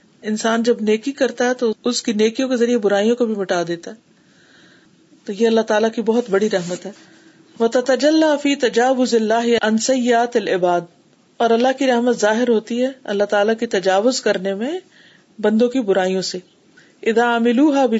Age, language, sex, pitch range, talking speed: 40-59, Urdu, female, 190-235 Hz, 160 wpm